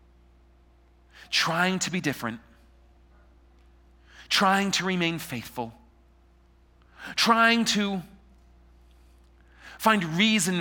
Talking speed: 70 wpm